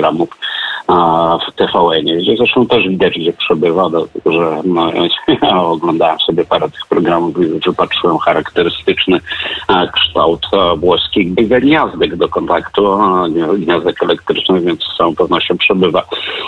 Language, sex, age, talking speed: Polish, male, 50-69, 125 wpm